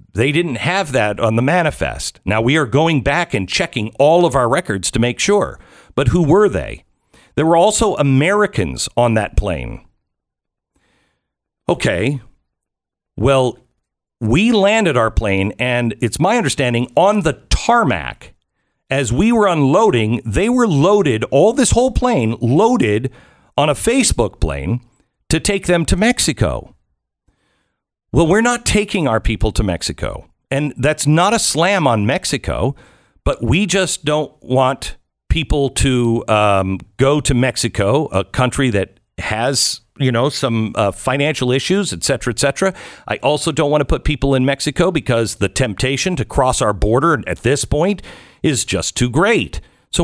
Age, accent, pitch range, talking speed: 50-69, American, 110-160 Hz, 155 wpm